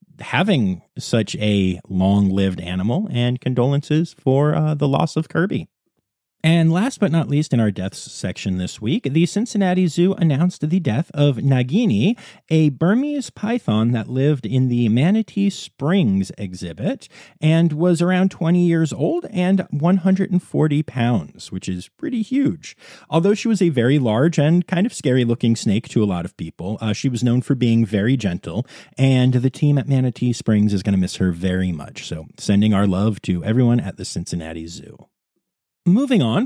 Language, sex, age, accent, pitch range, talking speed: English, male, 40-59, American, 110-180 Hz, 175 wpm